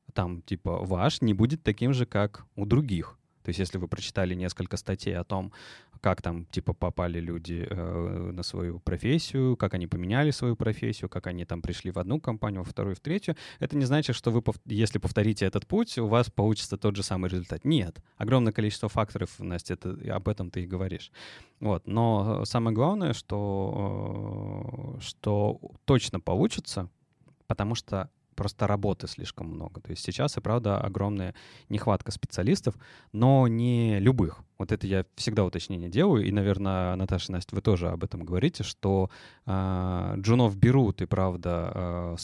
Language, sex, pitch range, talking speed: Russian, male, 95-115 Hz, 170 wpm